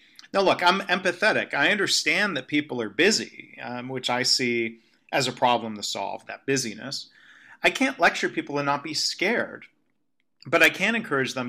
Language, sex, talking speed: English, male, 180 wpm